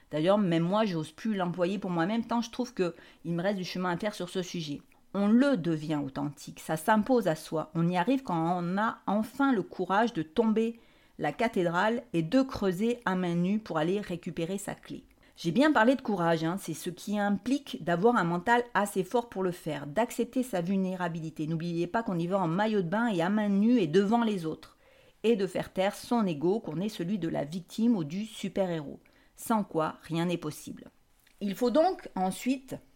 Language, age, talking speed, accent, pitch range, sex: French, 50-69, 210 wpm, French, 170-230 Hz, female